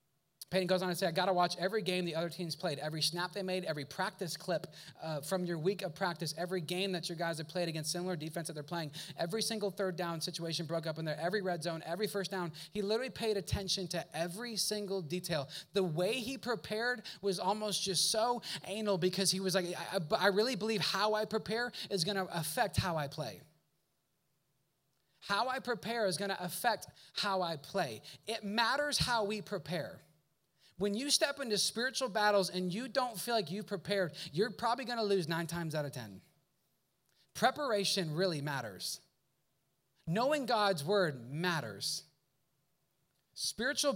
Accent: American